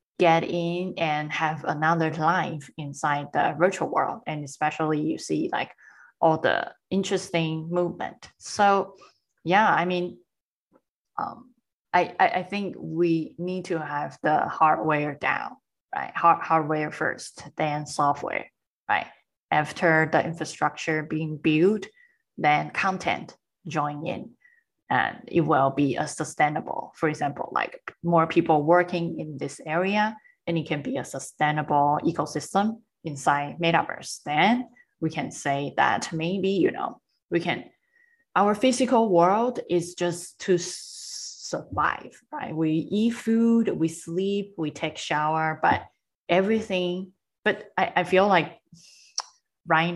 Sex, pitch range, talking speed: female, 155-195 Hz, 130 wpm